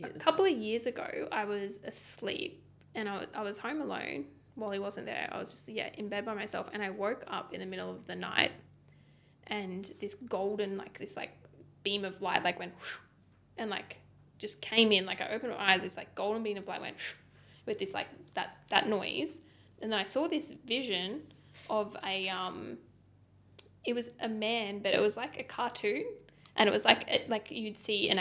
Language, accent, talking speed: English, Australian, 210 wpm